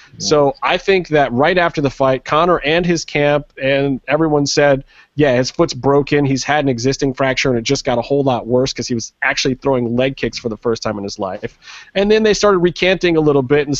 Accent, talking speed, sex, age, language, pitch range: American, 240 wpm, male, 30-49, English, 125-150 Hz